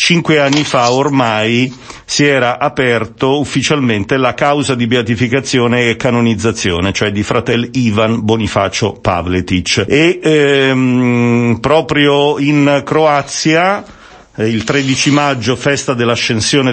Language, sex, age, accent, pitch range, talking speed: Italian, male, 50-69, native, 105-135 Hz, 110 wpm